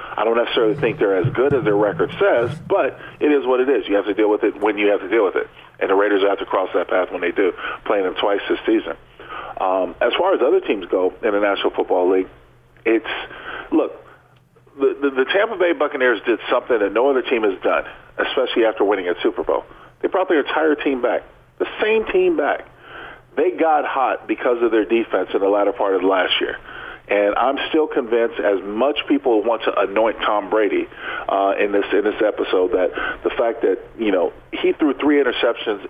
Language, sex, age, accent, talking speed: English, male, 40-59, American, 220 wpm